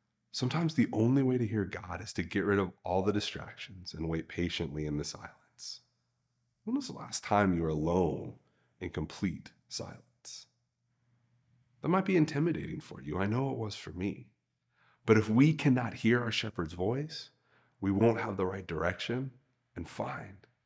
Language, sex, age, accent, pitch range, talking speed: English, male, 30-49, American, 95-135 Hz, 175 wpm